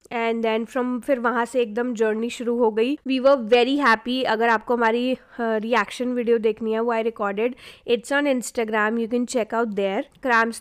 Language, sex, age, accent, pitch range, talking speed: Hindi, female, 20-39, native, 230-285 Hz, 200 wpm